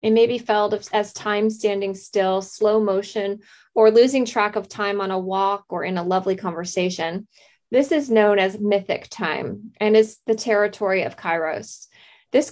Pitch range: 195-225 Hz